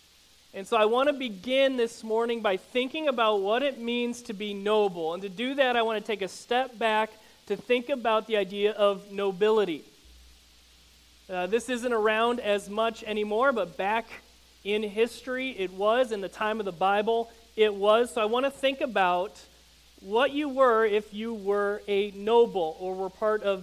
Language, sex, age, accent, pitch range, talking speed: English, male, 40-59, American, 195-235 Hz, 190 wpm